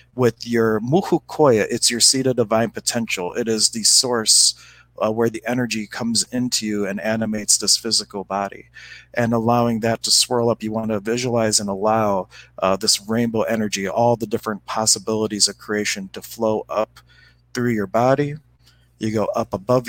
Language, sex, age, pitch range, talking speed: English, male, 40-59, 105-120 Hz, 170 wpm